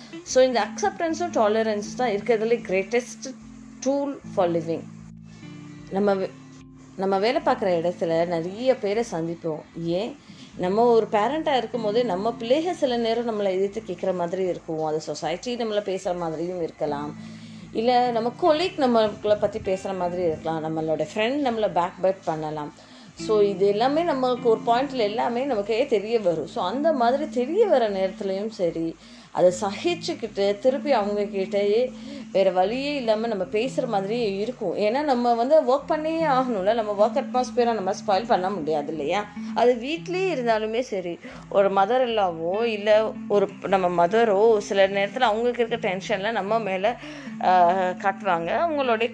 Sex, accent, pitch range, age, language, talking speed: female, native, 185-245 Hz, 20-39, Tamil, 95 wpm